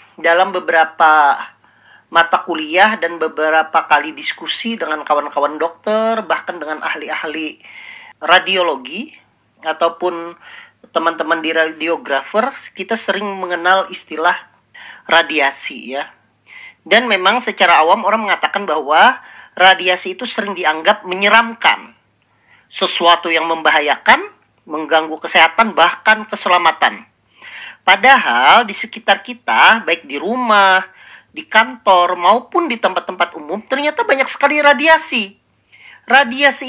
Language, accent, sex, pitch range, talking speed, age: Indonesian, native, male, 165-230 Hz, 100 wpm, 40-59